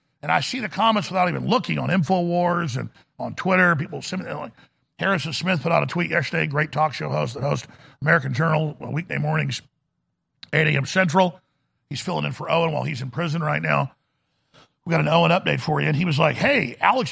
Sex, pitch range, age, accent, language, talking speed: male, 150-190 Hz, 50-69, American, English, 210 wpm